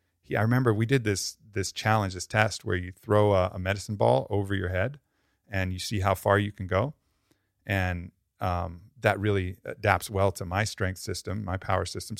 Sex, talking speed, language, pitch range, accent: male, 195 wpm, English, 95-110 Hz, American